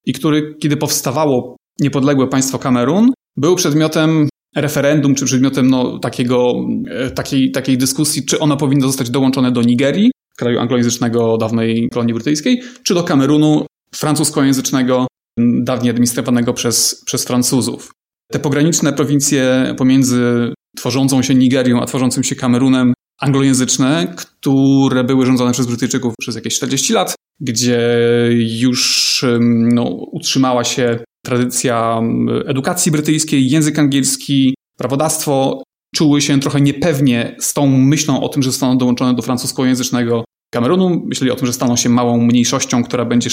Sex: male